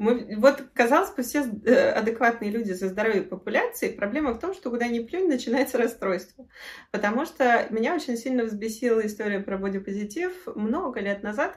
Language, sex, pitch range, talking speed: Russian, female, 195-245 Hz, 160 wpm